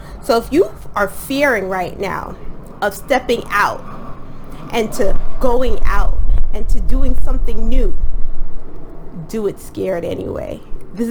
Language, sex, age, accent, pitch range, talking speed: English, female, 20-39, American, 195-245 Hz, 130 wpm